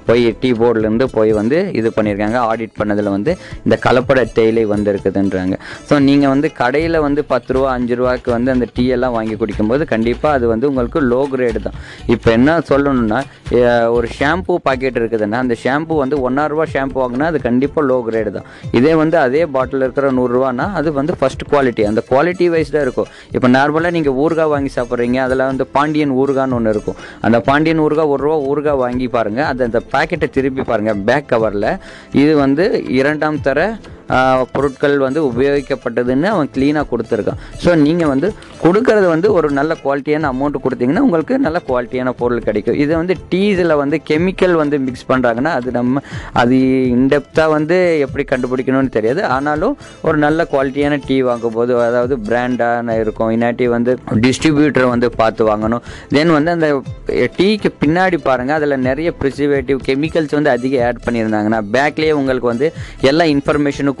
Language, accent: Tamil, native